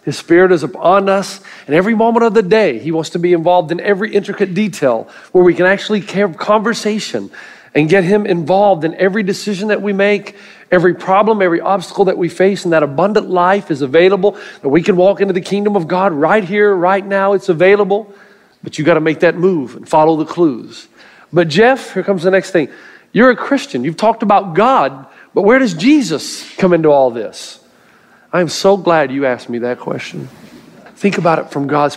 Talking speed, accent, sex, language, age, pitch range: 210 wpm, American, male, English, 40-59, 170-210 Hz